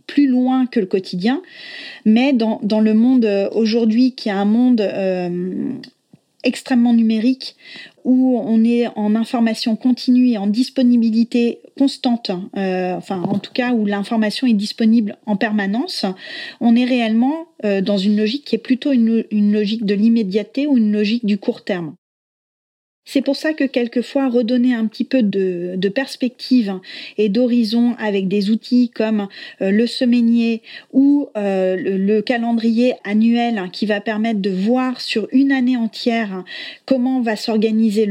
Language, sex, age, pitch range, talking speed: French, female, 30-49, 205-250 Hz, 155 wpm